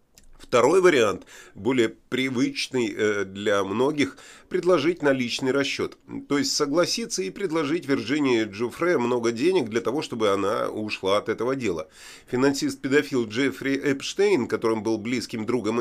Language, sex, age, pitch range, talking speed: Russian, male, 30-49, 115-165 Hz, 130 wpm